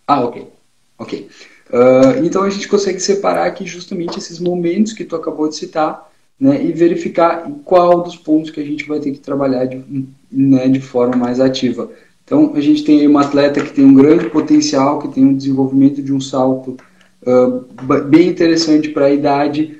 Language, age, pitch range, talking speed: Portuguese, 20-39, 135-185 Hz, 190 wpm